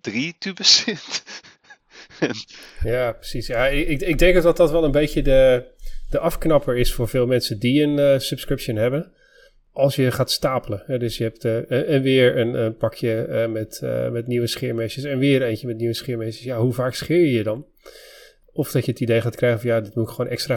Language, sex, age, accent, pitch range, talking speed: Dutch, male, 30-49, Dutch, 120-145 Hz, 215 wpm